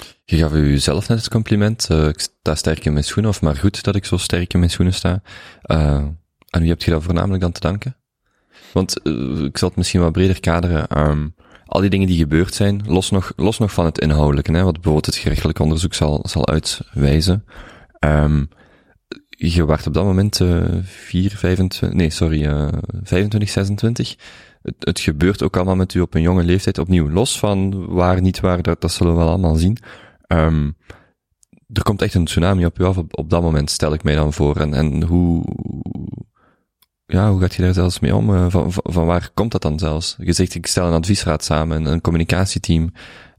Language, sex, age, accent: Dutch, male, 20-39, Belgian